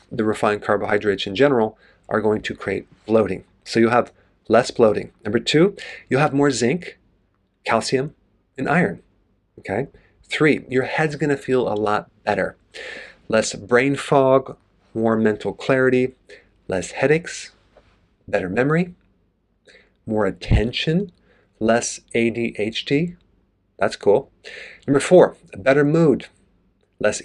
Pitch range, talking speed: 105-130 Hz, 125 wpm